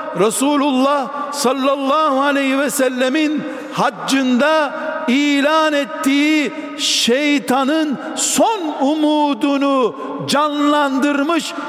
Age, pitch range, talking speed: 60-79, 235-290 Hz, 60 wpm